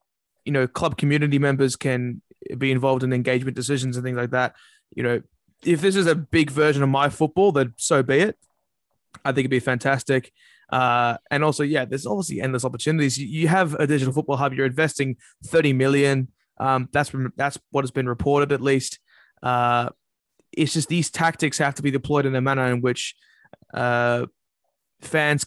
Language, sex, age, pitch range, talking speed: English, male, 20-39, 130-145 Hz, 185 wpm